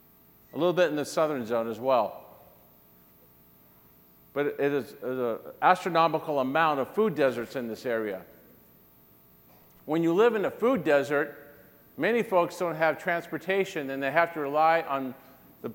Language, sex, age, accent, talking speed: English, male, 50-69, American, 150 wpm